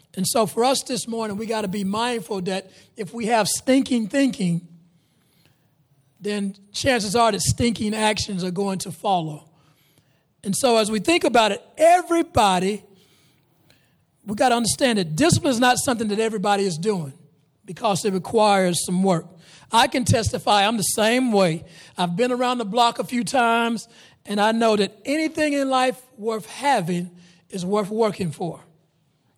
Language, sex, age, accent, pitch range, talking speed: English, male, 40-59, American, 185-245 Hz, 165 wpm